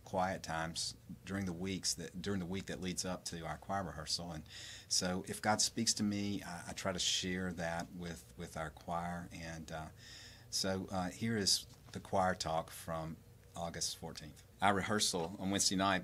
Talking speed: 185 wpm